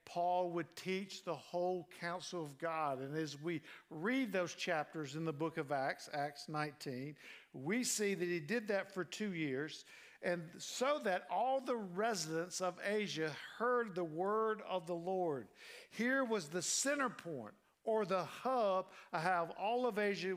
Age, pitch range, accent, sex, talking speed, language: 50-69, 150-190 Hz, American, male, 170 wpm, English